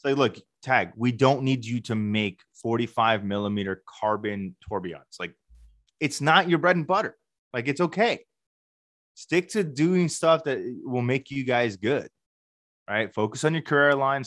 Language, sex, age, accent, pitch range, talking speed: English, male, 20-39, American, 110-135 Hz, 160 wpm